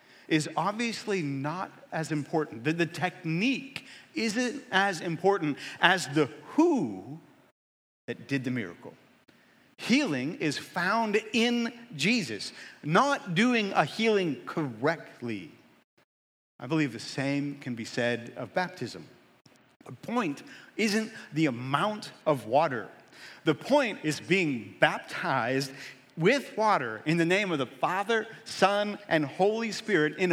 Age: 50-69